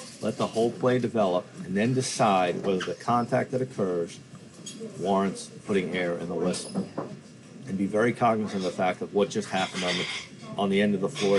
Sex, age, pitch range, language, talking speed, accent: male, 40-59, 95-115 Hz, English, 200 wpm, American